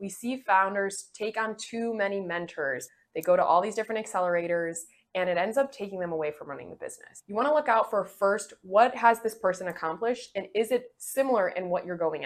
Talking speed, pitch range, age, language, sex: 225 wpm, 170-220 Hz, 20-39, English, female